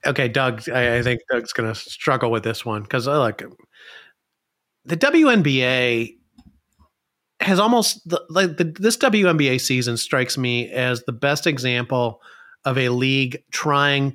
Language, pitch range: English, 125-150 Hz